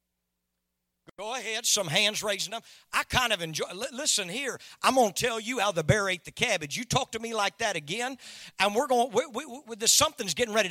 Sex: male